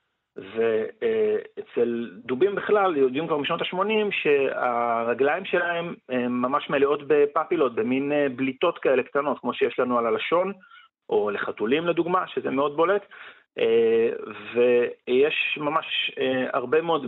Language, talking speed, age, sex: Hebrew, 110 wpm, 40-59, male